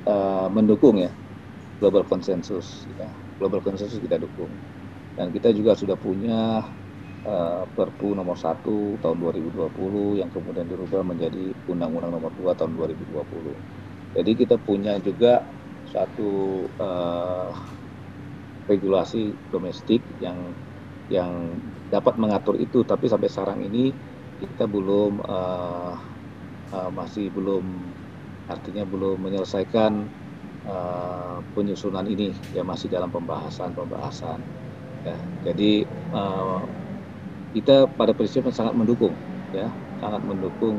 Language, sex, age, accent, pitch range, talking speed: Indonesian, male, 40-59, native, 90-105 Hz, 110 wpm